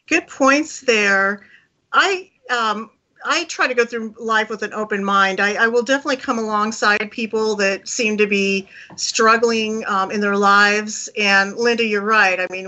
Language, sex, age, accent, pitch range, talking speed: English, female, 40-59, American, 205-260 Hz, 175 wpm